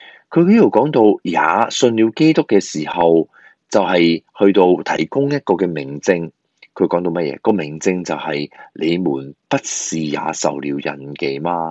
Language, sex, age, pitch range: Chinese, male, 20-39, 80-120 Hz